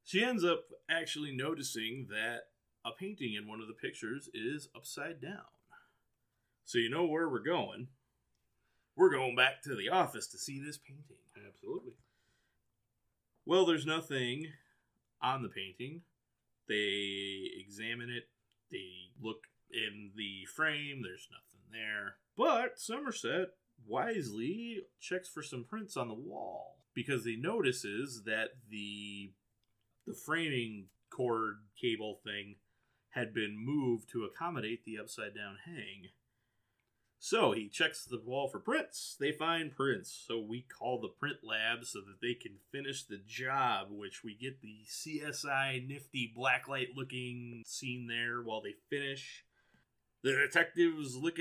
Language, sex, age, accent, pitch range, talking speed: English, male, 30-49, American, 110-150 Hz, 135 wpm